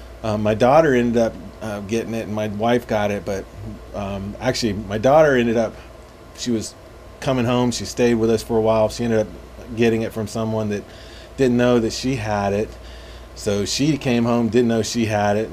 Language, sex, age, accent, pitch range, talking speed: English, male, 30-49, American, 105-125 Hz, 210 wpm